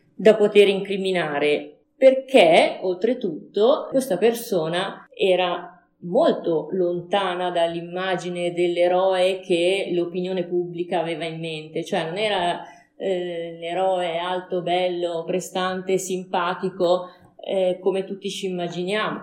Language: Italian